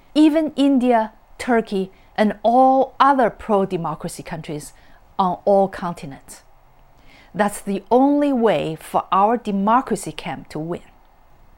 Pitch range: 175-230 Hz